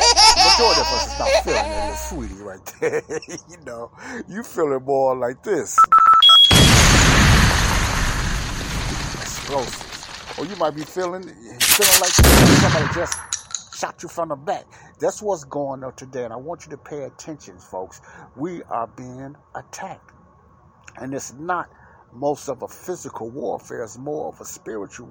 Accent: American